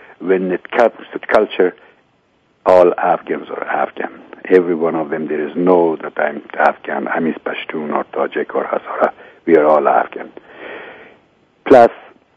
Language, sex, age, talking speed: English, male, 60-79, 155 wpm